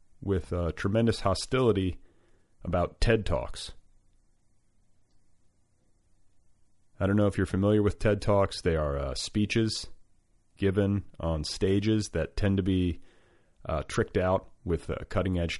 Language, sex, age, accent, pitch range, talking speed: English, male, 30-49, American, 85-100 Hz, 125 wpm